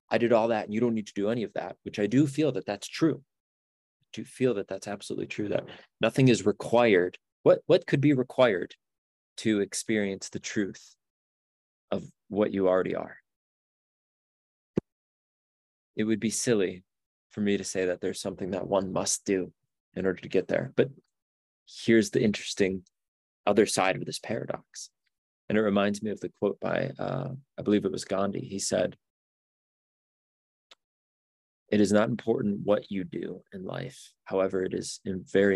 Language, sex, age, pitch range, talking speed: English, male, 20-39, 95-110 Hz, 175 wpm